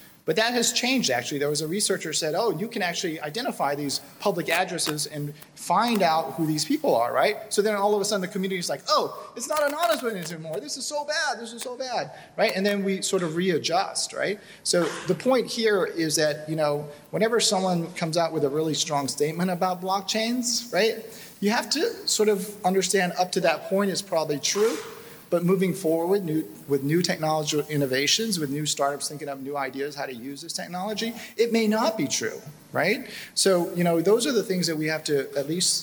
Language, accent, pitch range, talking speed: English, American, 150-200 Hz, 220 wpm